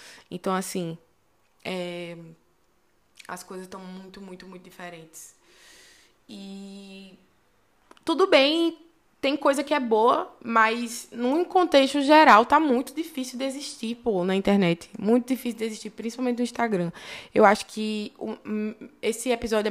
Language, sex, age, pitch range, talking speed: Portuguese, female, 20-39, 175-230 Hz, 120 wpm